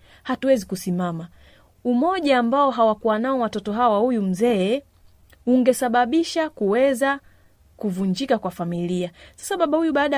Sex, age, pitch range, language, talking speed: female, 30-49, 190-265 Hz, Swahili, 110 wpm